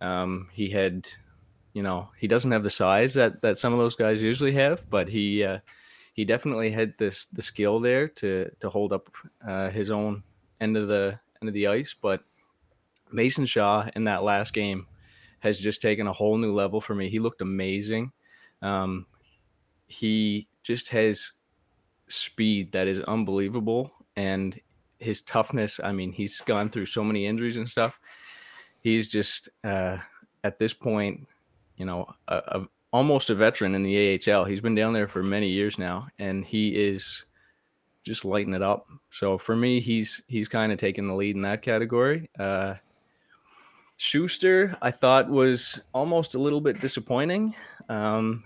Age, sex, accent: 20-39, male, American